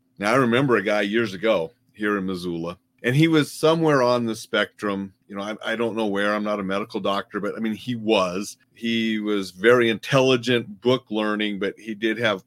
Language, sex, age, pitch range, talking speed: English, male, 40-59, 100-125 Hz, 210 wpm